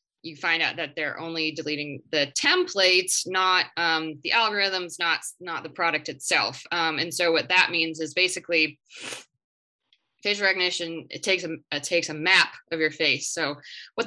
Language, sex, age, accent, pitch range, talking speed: English, female, 20-39, American, 160-185 Hz, 170 wpm